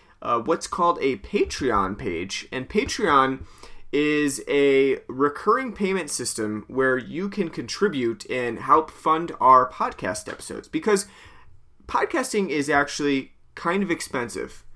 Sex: male